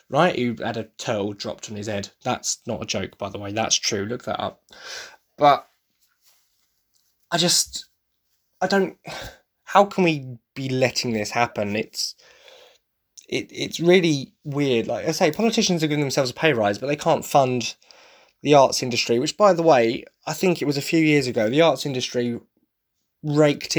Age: 20-39